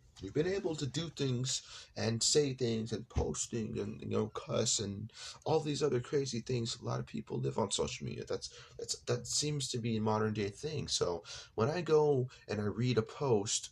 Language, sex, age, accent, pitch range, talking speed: English, male, 30-49, American, 100-125 Hz, 210 wpm